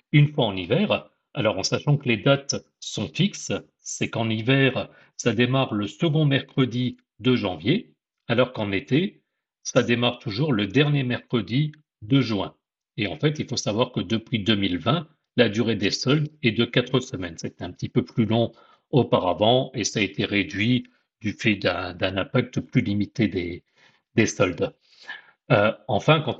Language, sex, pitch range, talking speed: French, male, 105-135 Hz, 170 wpm